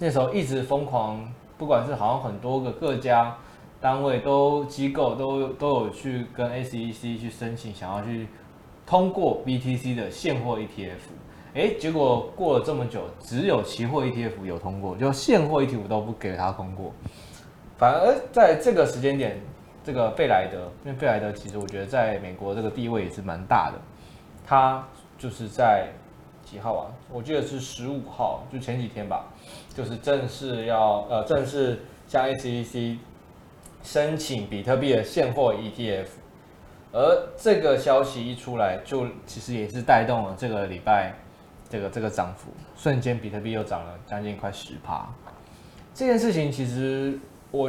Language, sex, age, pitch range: Chinese, male, 20-39, 110-135 Hz